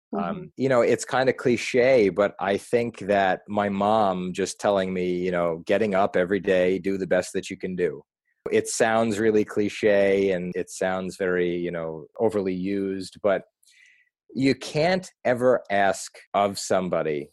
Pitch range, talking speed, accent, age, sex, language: 95-125 Hz, 165 wpm, American, 30-49, male, English